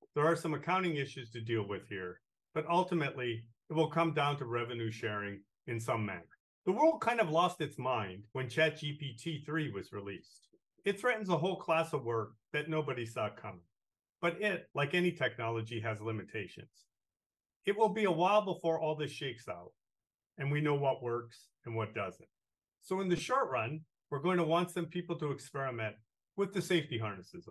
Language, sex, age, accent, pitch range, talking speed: English, male, 40-59, American, 115-165 Hz, 185 wpm